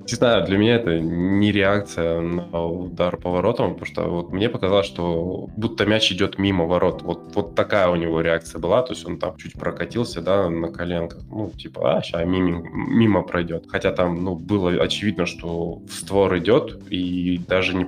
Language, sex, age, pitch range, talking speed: Russian, male, 20-39, 85-100 Hz, 185 wpm